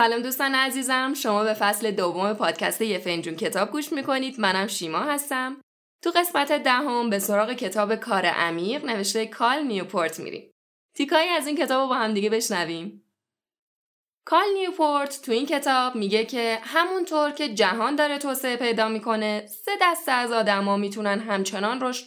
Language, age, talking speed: Persian, 10-29, 160 wpm